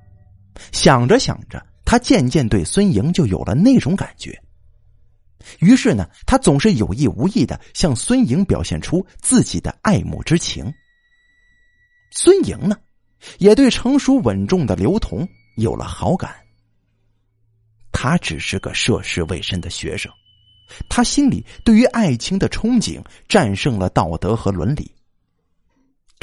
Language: Chinese